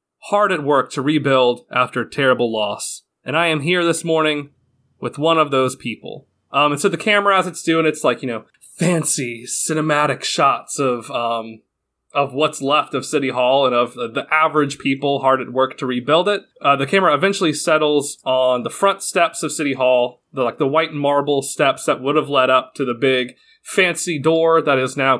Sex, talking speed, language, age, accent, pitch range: male, 200 wpm, English, 30-49, American, 130-165 Hz